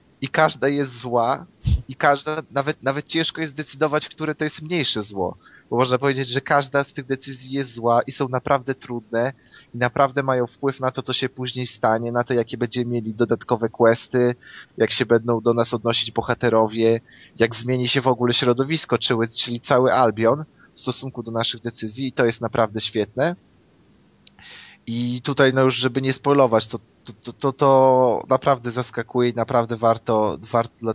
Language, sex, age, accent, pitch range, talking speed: Polish, male, 20-39, native, 110-130 Hz, 180 wpm